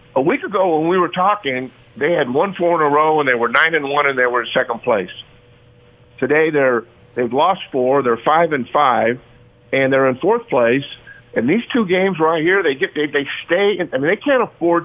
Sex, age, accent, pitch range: male, 50-69, American, 120-160 Hz